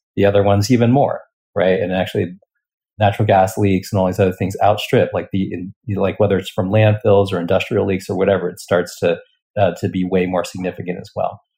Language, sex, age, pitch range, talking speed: English, male, 30-49, 95-115 Hz, 205 wpm